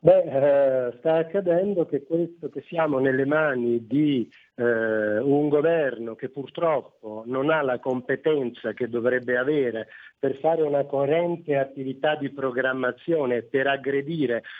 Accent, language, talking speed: native, Italian, 125 wpm